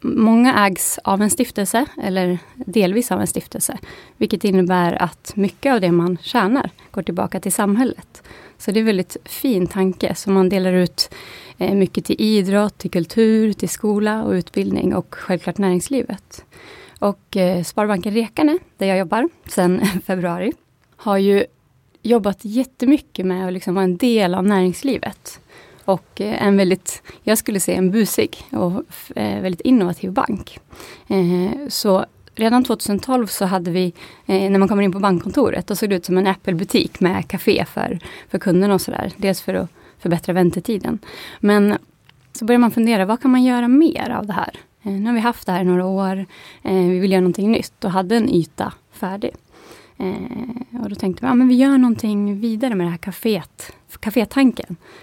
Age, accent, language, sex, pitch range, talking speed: 30-49, native, Swedish, female, 185-230 Hz, 170 wpm